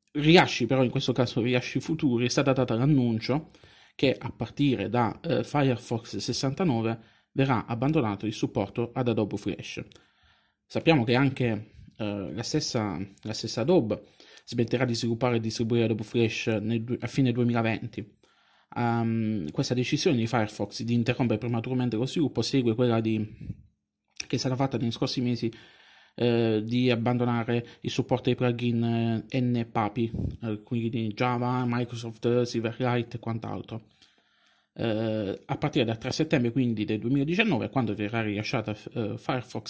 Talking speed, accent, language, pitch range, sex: 140 wpm, native, Italian, 115-130 Hz, male